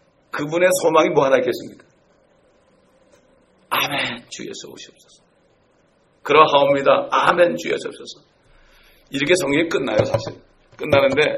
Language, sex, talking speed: English, male, 90 wpm